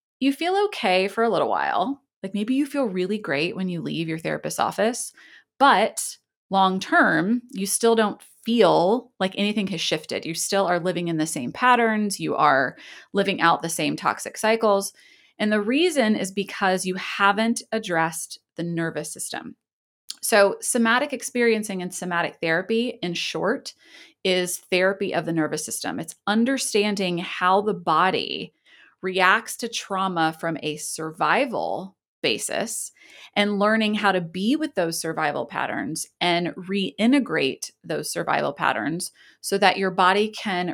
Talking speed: 150 wpm